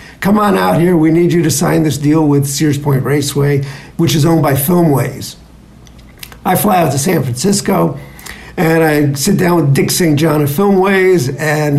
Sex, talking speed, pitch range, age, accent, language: male, 190 wpm, 150-185 Hz, 50-69, American, English